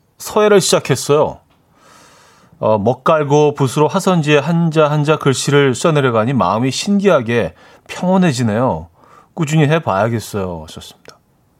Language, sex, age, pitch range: Korean, male, 40-59, 105-145 Hz